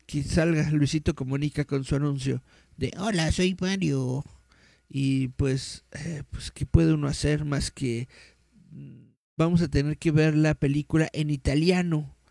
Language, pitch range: Spanish, 140-195 Hz